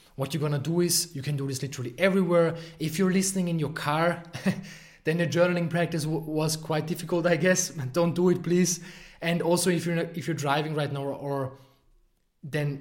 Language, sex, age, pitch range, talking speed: English, male, 20-39, 130-170 Hz, 195 wpm